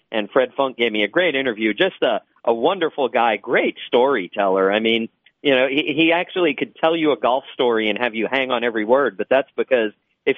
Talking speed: 225 wpm